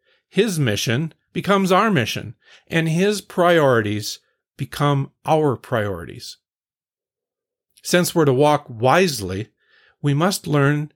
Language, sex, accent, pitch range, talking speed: English, male, American, 115-165 Hz, 105 wpm